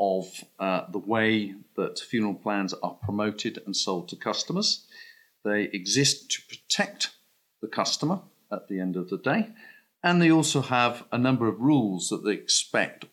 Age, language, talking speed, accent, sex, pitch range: 50-69, English, 165 wpm, British, male, 100-145 Hz